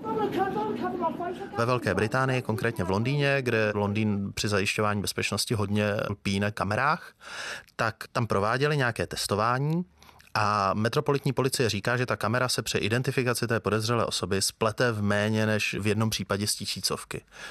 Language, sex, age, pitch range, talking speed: Czech, male, 30-49, 100-125 Hz, 135 wpm